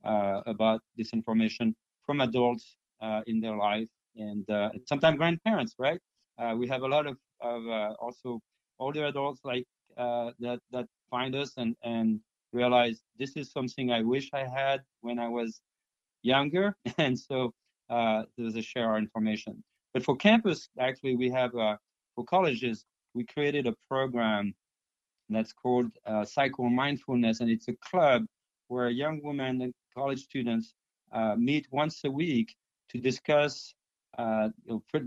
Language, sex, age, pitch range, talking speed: English, male, 30-49, 115-135 Hz, 160 wpm